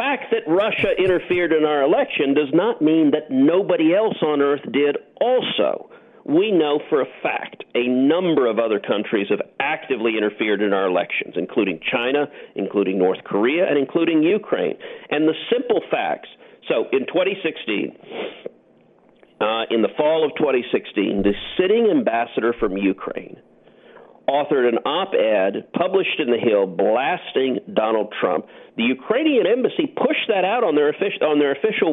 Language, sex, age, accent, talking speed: English, male, 50-69, American, 155 wpm